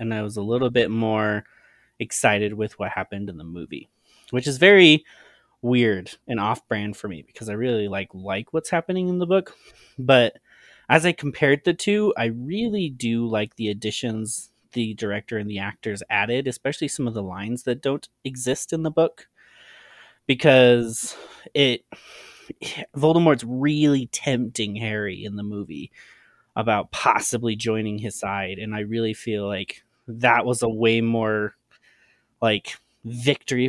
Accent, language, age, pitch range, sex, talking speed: American, English, 20-39, 115-150 Hz, male, 155 wpm